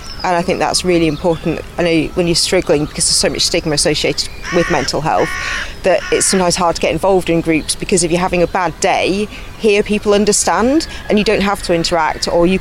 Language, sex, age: English, female, 30-49